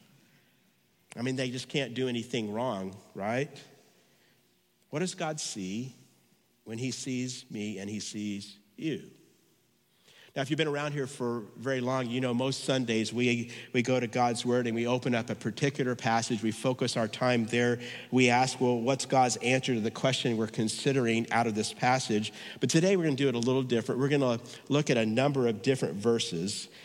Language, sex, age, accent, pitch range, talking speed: English, male, 50-69, American, 115-135 Hz, 190 wpm